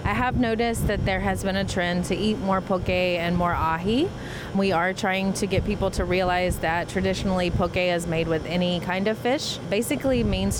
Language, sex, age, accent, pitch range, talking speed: English, female, 30-49, American, 165-195 Hz, 205 wpm